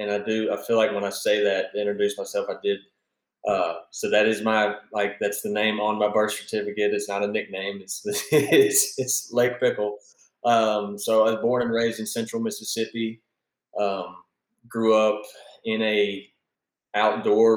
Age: 20-39